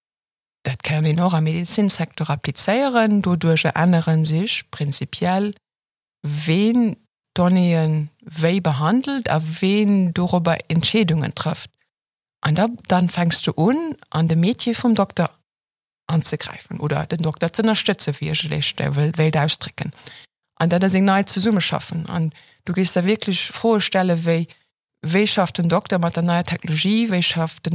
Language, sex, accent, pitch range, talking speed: English, female, German, 160-195 Hz, 140 wpm